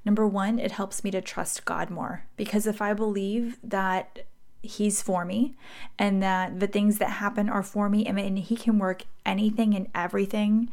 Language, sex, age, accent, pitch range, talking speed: English, female, 20-39, American, 190-230 Hz, 185 wpm